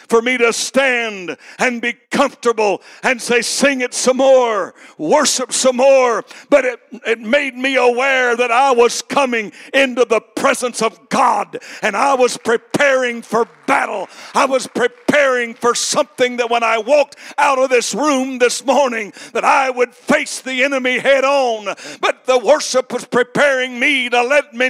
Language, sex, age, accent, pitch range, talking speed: English, male, 60-79, American, 255-320 Hz, 165 wpm